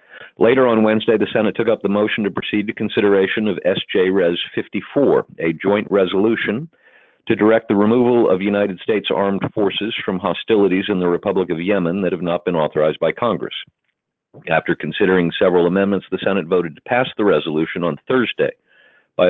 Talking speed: 175 wpm